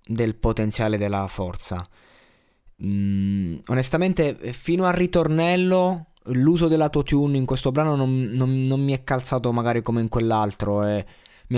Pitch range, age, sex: 105-130 Hz, 20-39, male